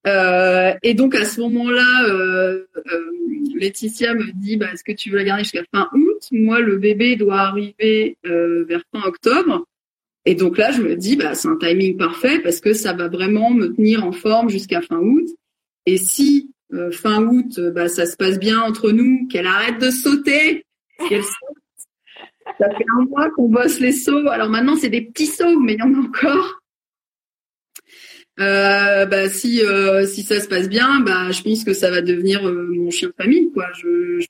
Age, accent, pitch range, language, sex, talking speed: 30-49, French, 195-265 Hz, French, female, 205 wpm